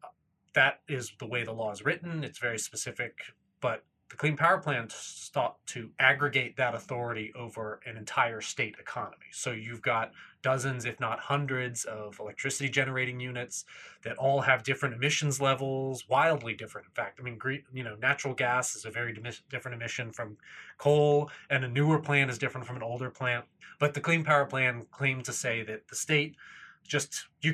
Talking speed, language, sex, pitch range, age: 180 wpm, English, male, 115-145 Hz, 30-49